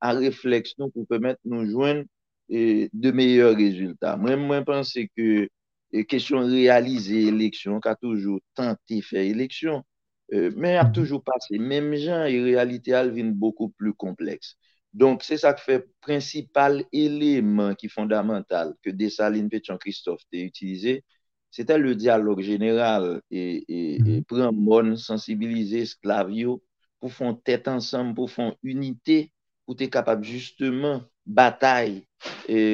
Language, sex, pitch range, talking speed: French, male, 105-130 Hz, 140 wpm